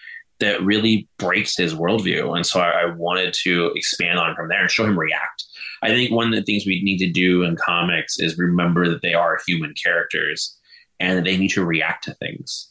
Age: 20-39